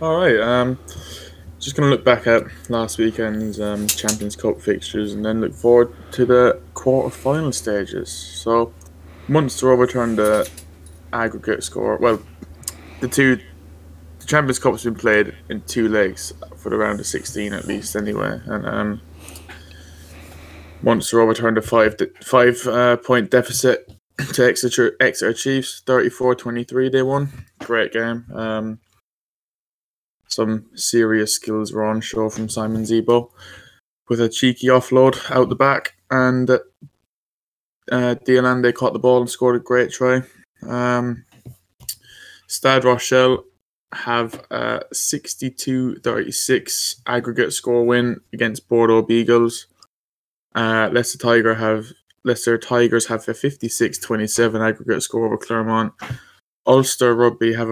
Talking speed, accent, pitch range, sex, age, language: 125 wpm, British, 105-125 Hz, male, 20-39, English